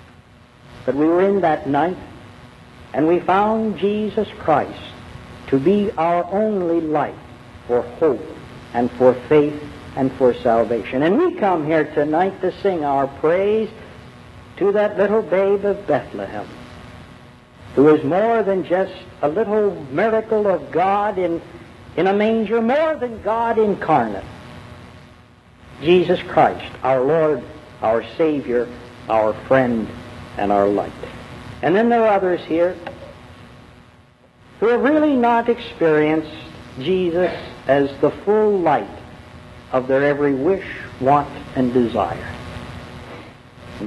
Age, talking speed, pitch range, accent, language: 60-79, 125 wpm, 125-200 Hz, American, English